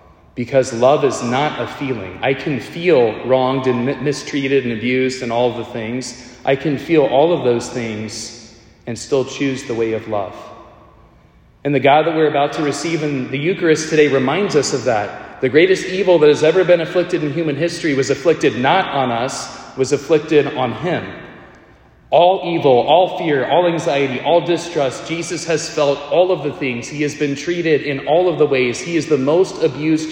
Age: 30-49